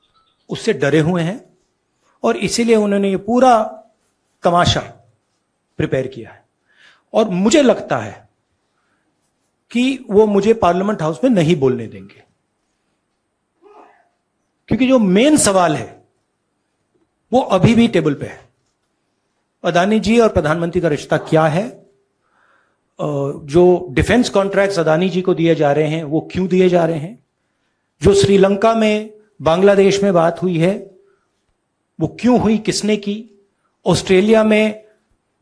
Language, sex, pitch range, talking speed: Hindi, male, 165-215 Hz, 130 wpm